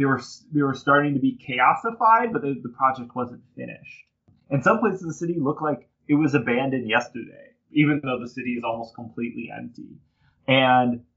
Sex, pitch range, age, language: male, 115-140 Hz, 20-39, English